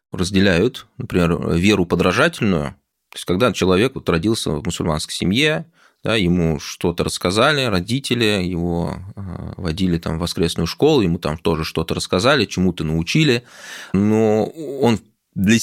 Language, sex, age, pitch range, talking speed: Russian, male, 20-39, 80-105 Hz, 130 wpm